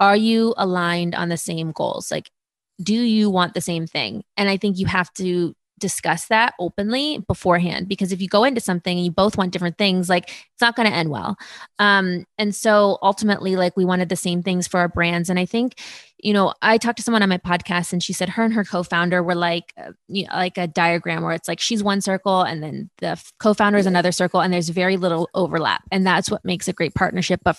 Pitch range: 175-205 Hz